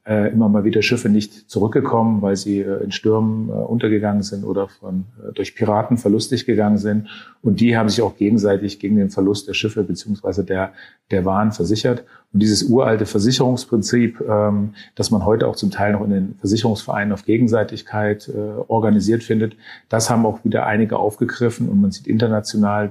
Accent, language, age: German, German, 40-59